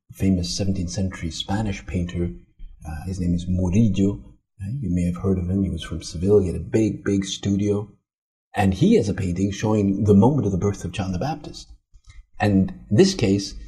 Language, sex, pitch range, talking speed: English, male, 95-120 Hz, 195 wpm